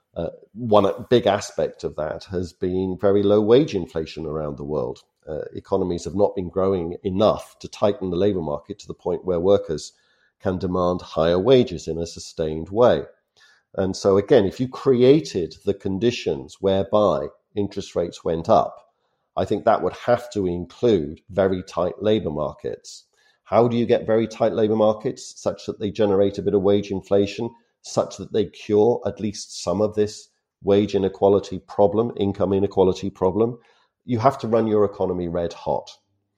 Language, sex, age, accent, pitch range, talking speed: English, male, 50-69, British, 90-115 Hz, 170 wpm